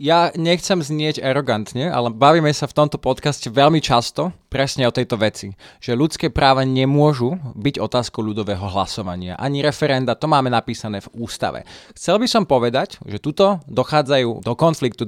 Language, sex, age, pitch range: Slovak, male, 20-39, 120-155 Hz